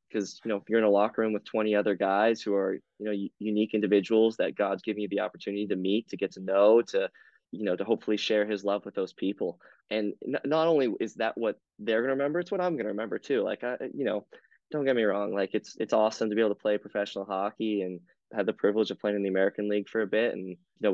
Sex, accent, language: male, American, English